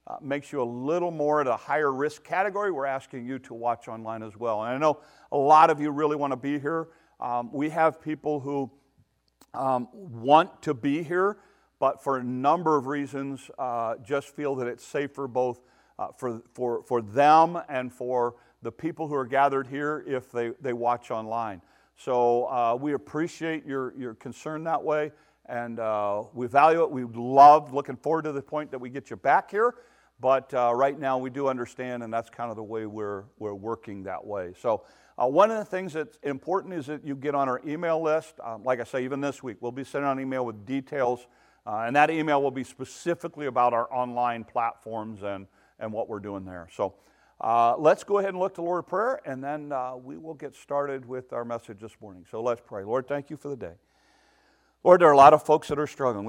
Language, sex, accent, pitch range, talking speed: English, male, American, 120-150 Hz, 220 wpm